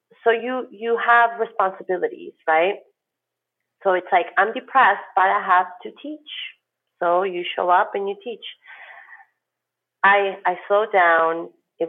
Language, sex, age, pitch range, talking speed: English, female, 30-49, 165-215 Hz, 140 wpm